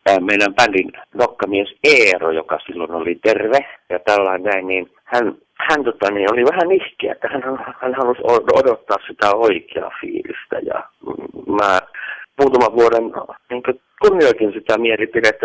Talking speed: 130 wpm